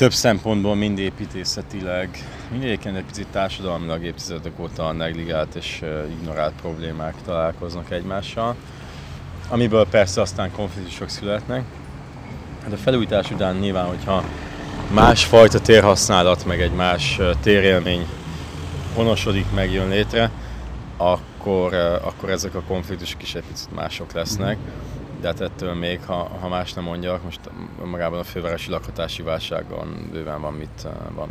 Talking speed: 125 wpm